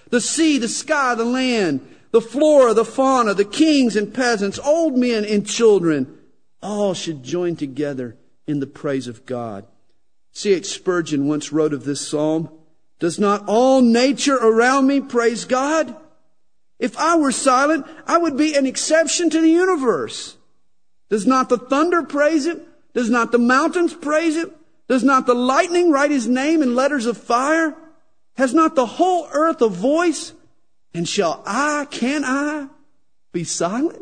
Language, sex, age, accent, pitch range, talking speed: English, male, 50-69, American, 170-285 Hz, 160 wpm